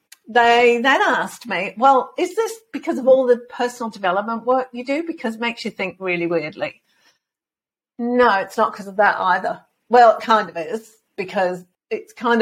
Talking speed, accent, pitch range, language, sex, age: 185 wpm, British, 190-245 Hz, English, female, 50-69